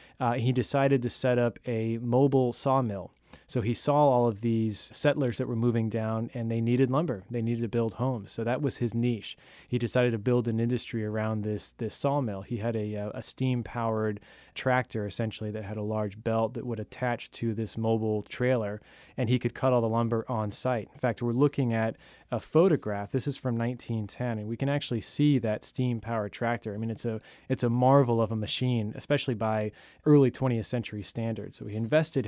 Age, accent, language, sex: 20-39, American, English, male